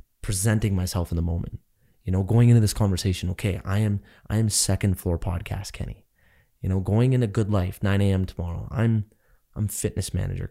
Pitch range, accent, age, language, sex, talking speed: 95-120 Hz, American, 20-39, English, male, 185 wpm